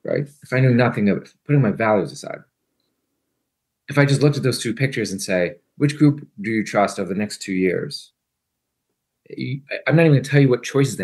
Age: 30-49